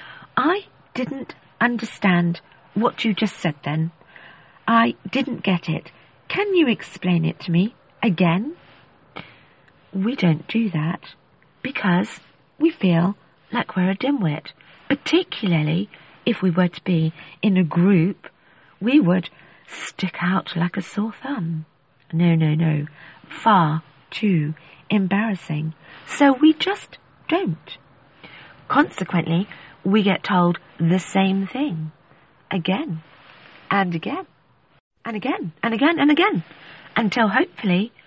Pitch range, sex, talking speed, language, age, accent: 165-230 Hz, female, 120 wpm, English, 50-69, British